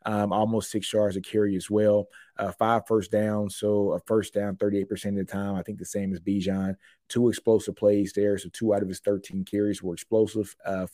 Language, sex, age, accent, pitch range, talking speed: English, male, 30-49, American, 90-105 Hz, 220 wpm